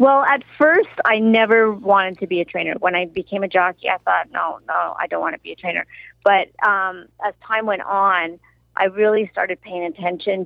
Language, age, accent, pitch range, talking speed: English, 40-59, American, 170-205 Hz, 210 wpm